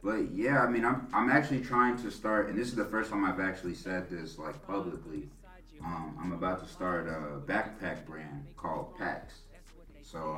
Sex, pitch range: male, 80-100 Hz